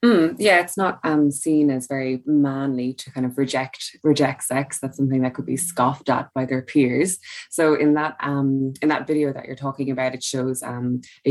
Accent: Irish